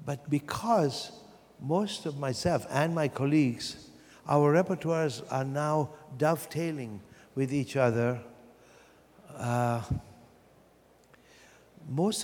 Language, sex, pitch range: English, male, 125-165 Hz